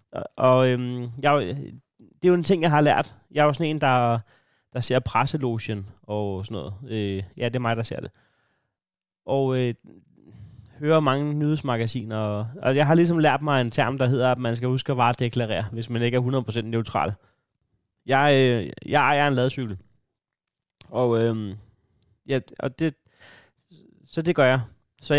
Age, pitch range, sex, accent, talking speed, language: 30-49, 115-140 Hz, male, native, 180 wpm, Danish